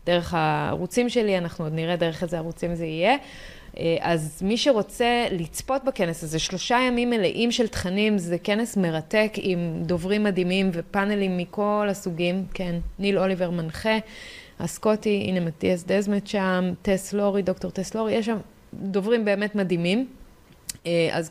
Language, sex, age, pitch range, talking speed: Hebrew, female, 20-39, 170-200 Hz, 140 wpm